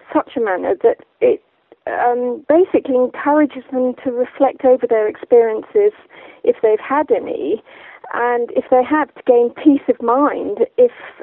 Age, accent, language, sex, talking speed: 50-69, British, English, female, 150 wpm